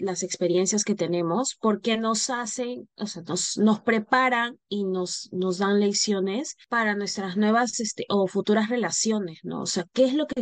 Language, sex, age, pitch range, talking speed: Spanish, female, 20-39, 180-215 Hz, 180 wpm